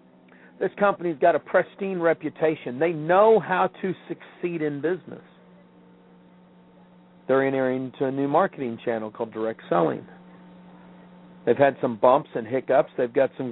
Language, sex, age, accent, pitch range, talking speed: English, male, 50-69, American, 110-175 Hz, 140 wpm